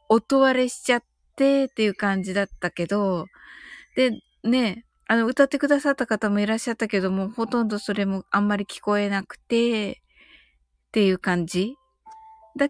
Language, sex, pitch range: Japanese, female, 170-265 Hz